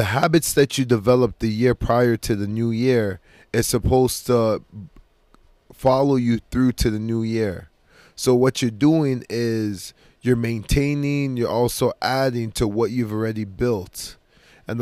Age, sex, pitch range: 20-39, male, 115-140 Hz